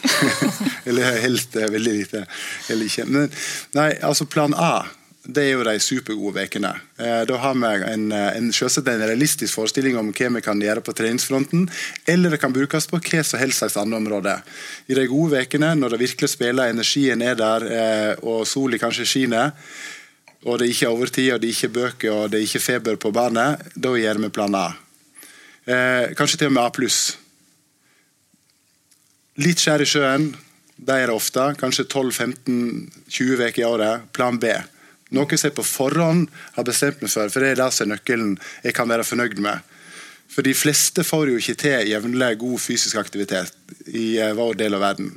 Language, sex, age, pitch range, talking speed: English, male, 20-39, 110-135 Hz, 180 wpm